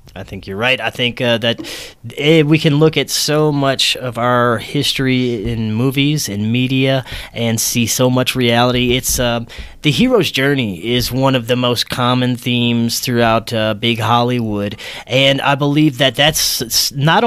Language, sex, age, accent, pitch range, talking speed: English, male, 30-49, American, 120-140 Hz, 170 wpm